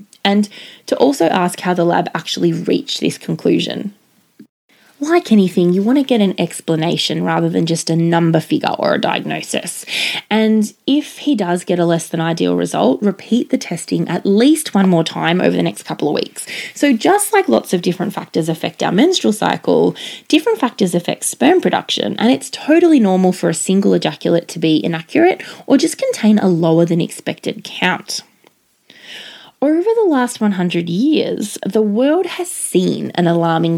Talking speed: 175 wpm